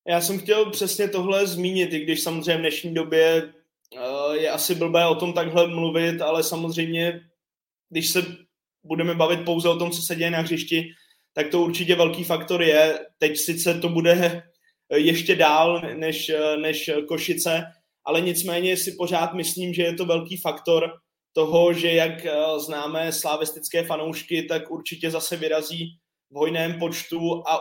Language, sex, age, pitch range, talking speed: Czech, male, 20-39, 160-175 Hz, 155 wpm